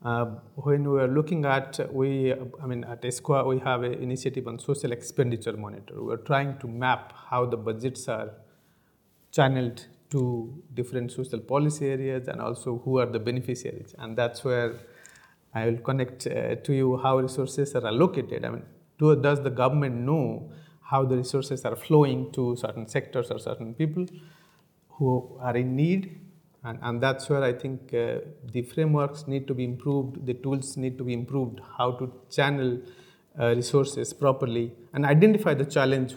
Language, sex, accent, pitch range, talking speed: English, male, Indian, 125-145 Hz, 170 wpm